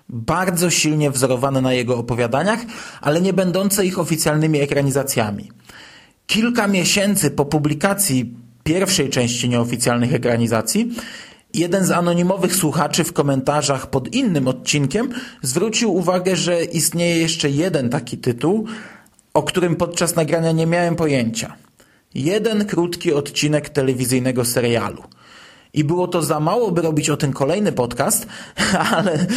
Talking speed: 125 wpm